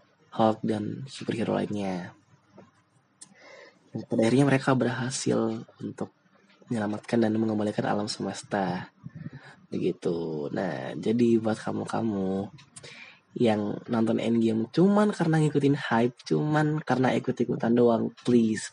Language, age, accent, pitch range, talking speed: Indonesian, 20-39, native, 115-150 Hz, 105 wpm